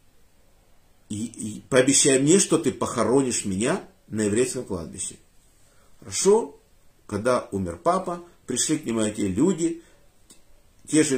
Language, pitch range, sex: Russian, 105-165 Hz, male